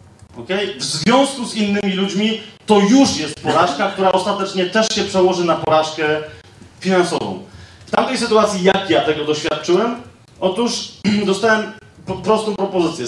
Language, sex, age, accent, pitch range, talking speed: Polish, male, 30-49, native, 160-210 Hz, 135 wpm